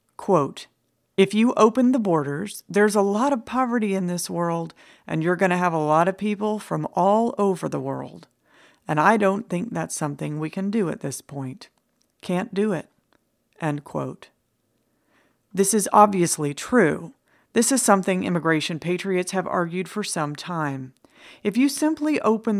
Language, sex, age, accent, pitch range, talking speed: English, female, 40-59, American, 165-215 Hz, 165 wpm